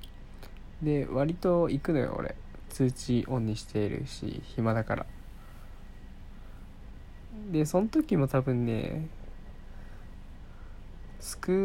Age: 20-39